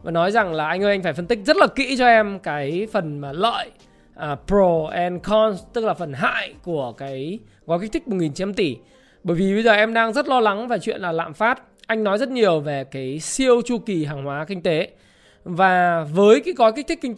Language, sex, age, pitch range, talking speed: Vietnamese, male, 20-39, 165-220 Hz, 235 wpm